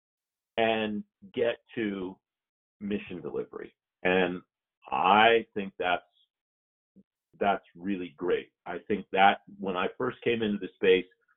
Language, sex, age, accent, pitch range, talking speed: English, male, 50-69, American, 95-110 Hz, 115 wpm